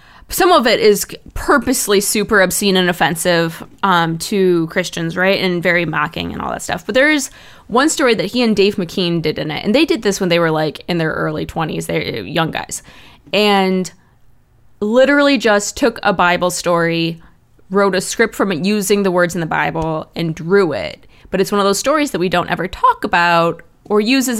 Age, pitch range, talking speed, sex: 20-39, 180-235 Hz, 205 wpm, female